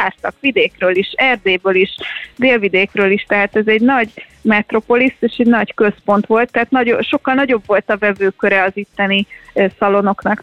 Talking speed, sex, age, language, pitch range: 140 wpm, female, 30-49, Hungarian, 205-240 Hz